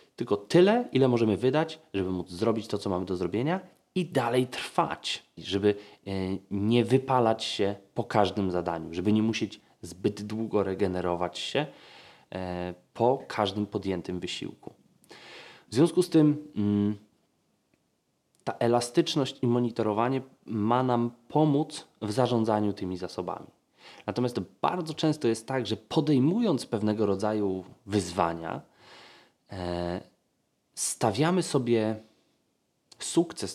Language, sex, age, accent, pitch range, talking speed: Polish, male, 20-39, native, 100-145 Hz, 115 wpm